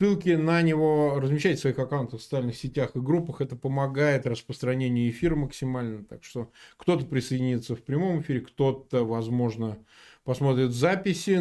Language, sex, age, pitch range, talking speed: Russian, male, 20-39, 130-170 Hz, 145 wpm